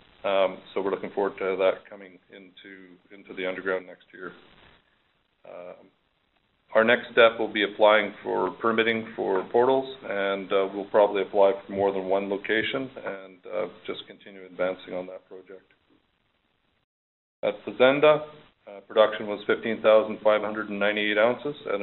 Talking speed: 155 wpm